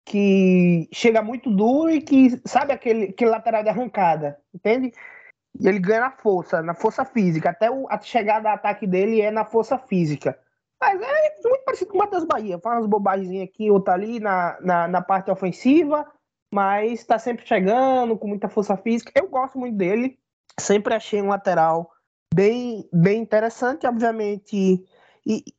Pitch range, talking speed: 195-280 Hz, 170 wpm